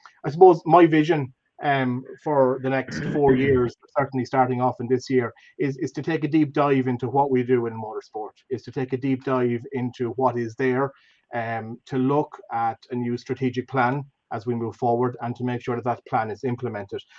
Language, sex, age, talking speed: English, male, 30-49, 210 wpm